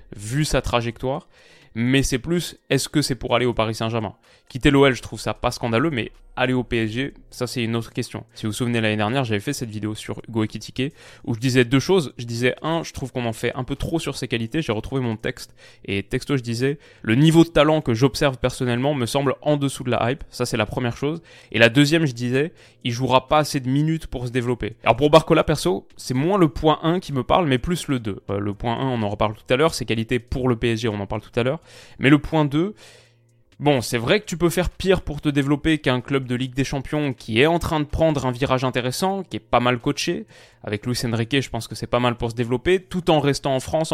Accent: French